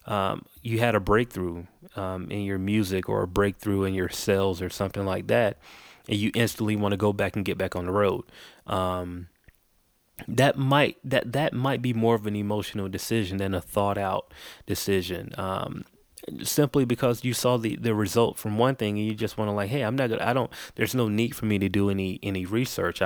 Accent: American